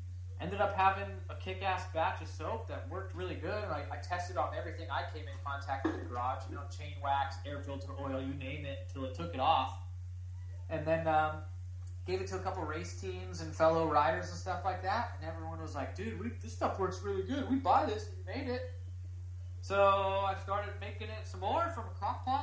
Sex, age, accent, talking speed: male, 20-39, American, 220 wpm